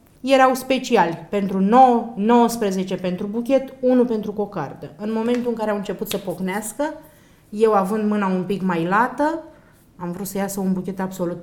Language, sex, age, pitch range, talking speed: English, female, 30-49, 195-245 Hz, 170 wpm